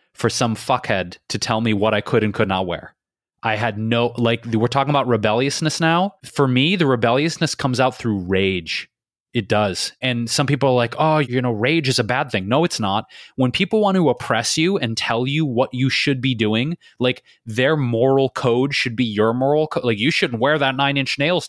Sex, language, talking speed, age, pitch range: male, English, 220 wpm, 20-39, 115-150 Hz